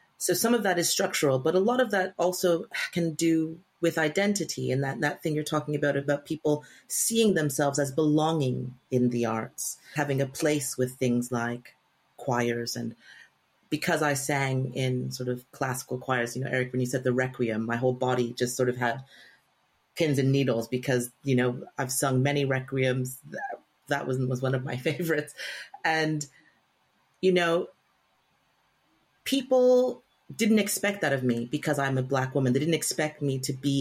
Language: English